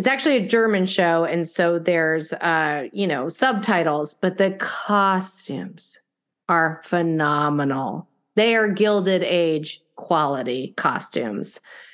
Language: English